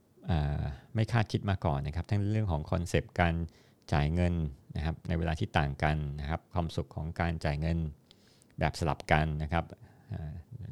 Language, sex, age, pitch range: Thai, male, 50-69, 80-105 Hz